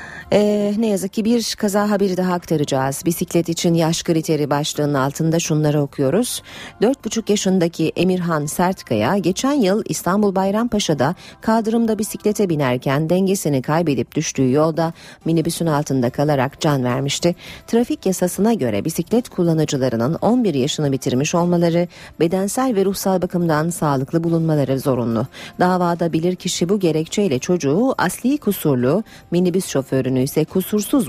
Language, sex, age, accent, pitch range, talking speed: Turkish, female, 40-59, native, 145-205 Hz, 125 wpm